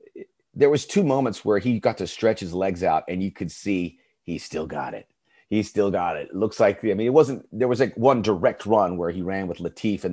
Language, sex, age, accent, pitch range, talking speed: English, male, 30-49, American, 95-125 Hz, 255 wpm